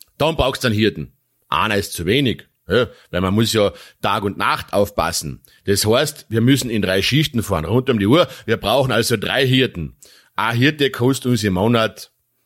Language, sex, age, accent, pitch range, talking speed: English, male, 40-59, German, 90-125 Hz, 195 wpm